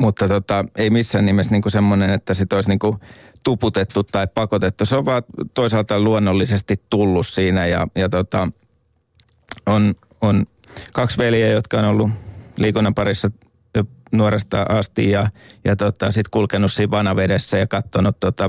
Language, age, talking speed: Finnish, 30-49, 145 wpm